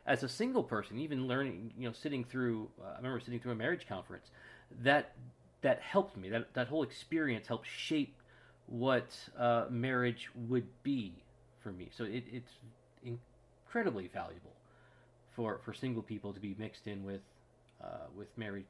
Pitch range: 115-130 Hz